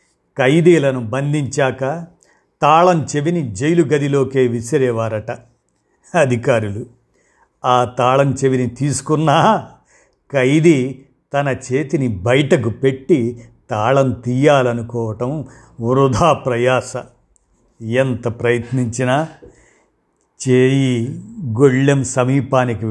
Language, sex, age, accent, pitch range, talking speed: Telugu, male, 50-69, native, 120-150 Hz, 70 wpm